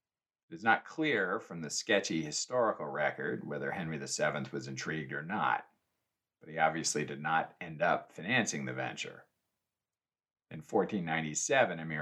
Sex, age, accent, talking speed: male, 40-59, American, 140 wpm